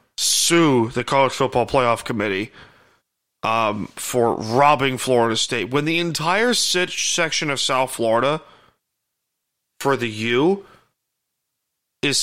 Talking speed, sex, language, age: 115 wpm, male, English, 30-49